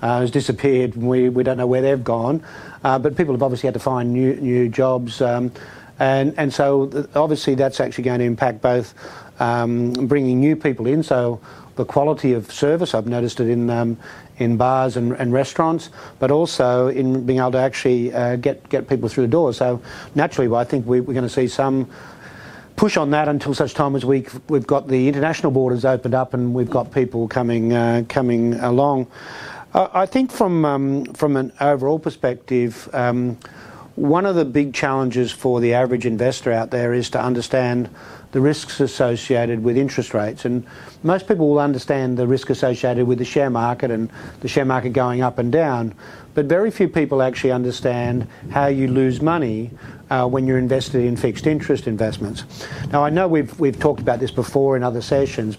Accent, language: Australian, English